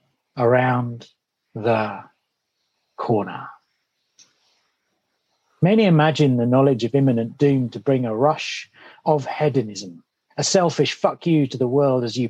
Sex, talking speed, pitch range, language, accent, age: male, 120 wpm, 125-160 Hz, English, British, 40-59